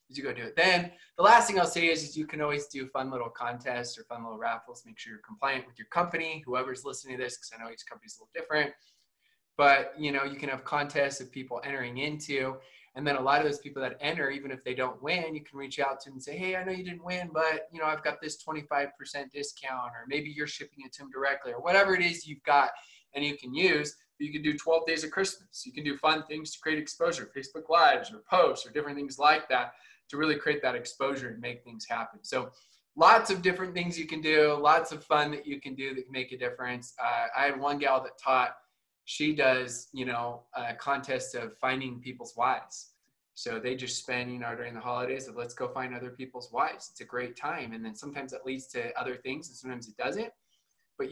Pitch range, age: 130-155 Hz, 20-39